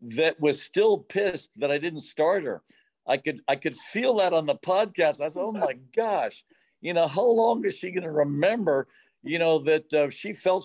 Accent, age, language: American, 50-69, English